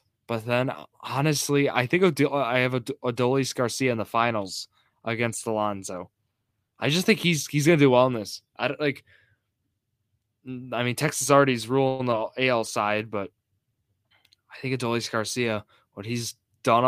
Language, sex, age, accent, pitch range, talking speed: English, male, 10-29, American, 110-130 Hz, 150 wpm